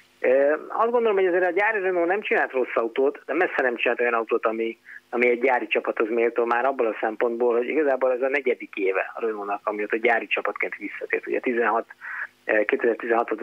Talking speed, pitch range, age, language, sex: 195 wpm, 120-155 Hz, 30-49, Hungarian, male